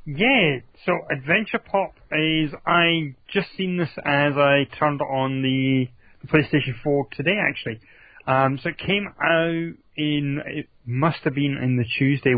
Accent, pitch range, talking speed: British, 120-145 Hz, 150 wpm